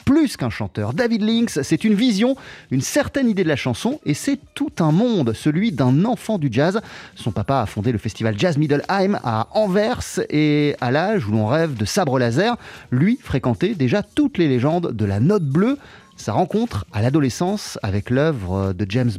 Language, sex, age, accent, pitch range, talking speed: French, male, 30-49, French, 120-205 Hz, 190 wpm